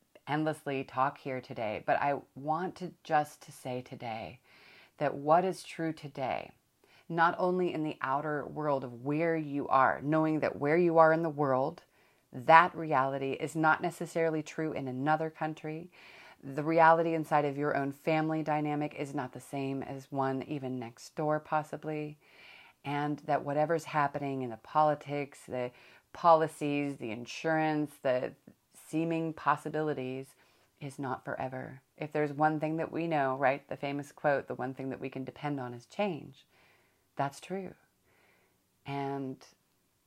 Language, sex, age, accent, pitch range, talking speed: English, female, 30-49, American, 135-155 Hz, 155 wpm